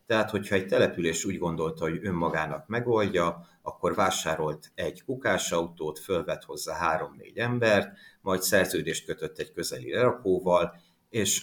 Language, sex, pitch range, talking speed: Hungarian, male, 85-100 Hz, 125 wpm